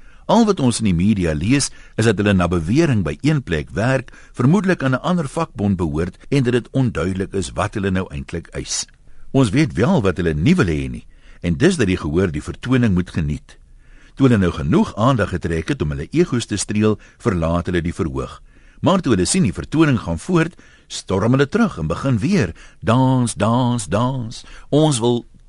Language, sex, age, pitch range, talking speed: Dutch, male, 60-79, 90-140 Hz, 200 wpm